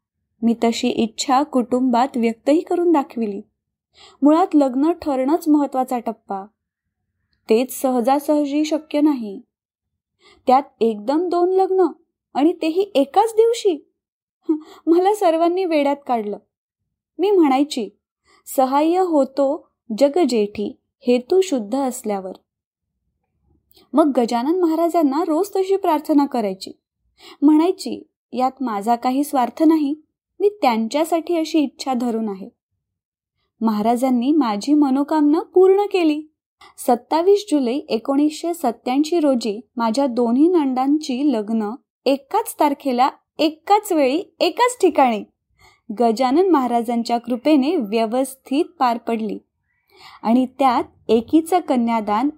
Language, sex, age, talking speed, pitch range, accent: Marathi, female, 20-39, 100 wpm, 240-330 Hz, native